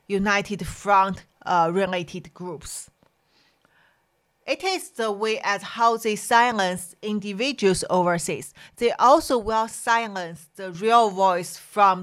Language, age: English, 40-59